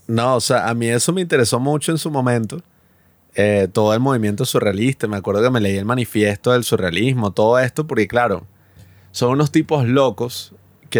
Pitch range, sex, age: 100-130 Hz, male, 20-39